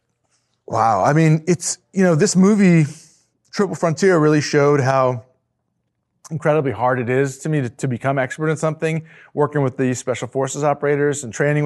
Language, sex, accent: English, male, American